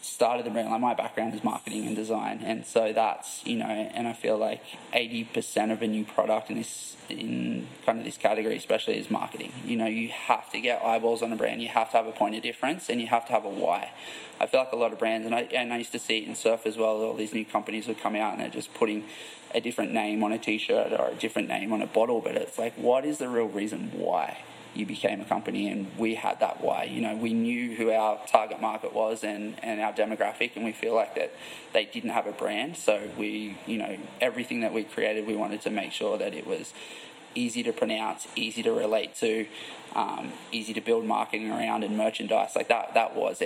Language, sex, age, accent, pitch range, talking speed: English, male, 20-39, Australian, 110-115 Hz, 245 wpm